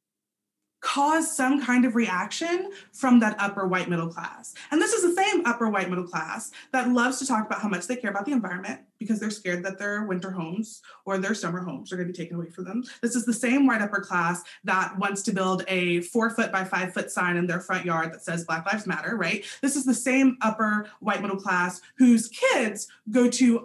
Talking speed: 230 wpm